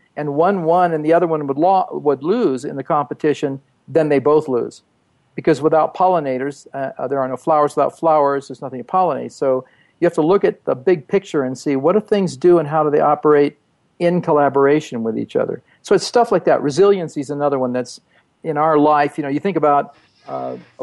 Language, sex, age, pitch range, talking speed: English, male, 50-69, 135-165 Hz, 220 wpm